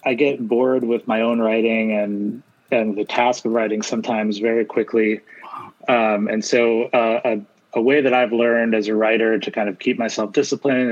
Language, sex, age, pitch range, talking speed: English, male, 30-49, 105-120 Hz, 190 wpm